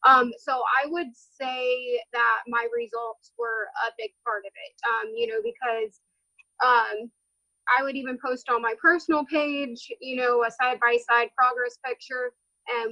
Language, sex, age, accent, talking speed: English, female, 20-39, American, 160 wpm